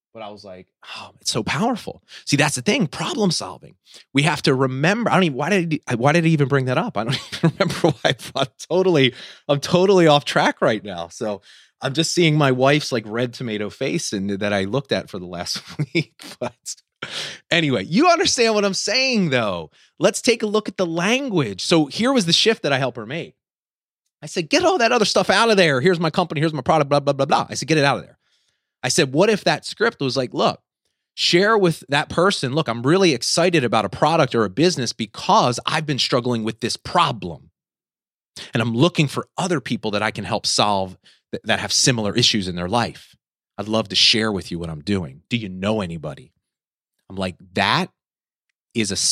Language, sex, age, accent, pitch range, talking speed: English, male, 30-49, American, 115-180 Hz, 220 wpm